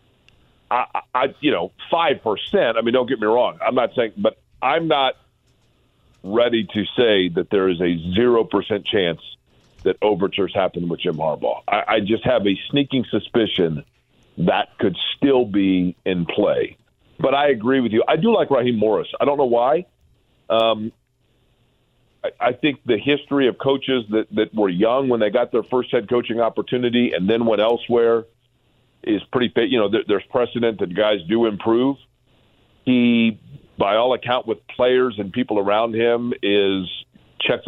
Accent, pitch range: American, 105-125 Hz